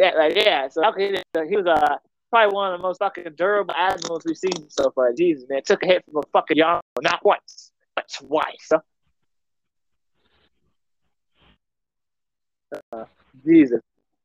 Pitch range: 150-195 Hz